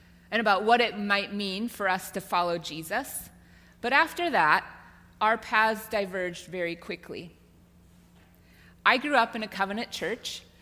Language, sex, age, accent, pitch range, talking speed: English, female, 30-49, American, 170-225 Hz, 145 wpm